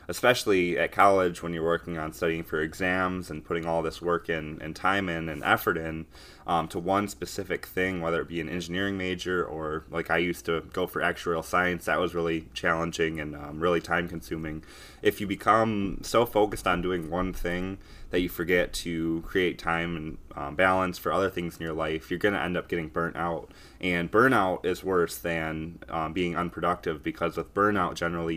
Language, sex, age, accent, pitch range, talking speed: English, male, 20-39, American, 80-90 Hz, 200 wpm